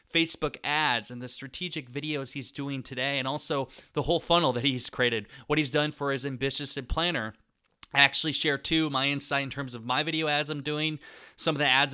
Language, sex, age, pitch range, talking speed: English, male, 20-39, 130-155 Hz, 210 wpm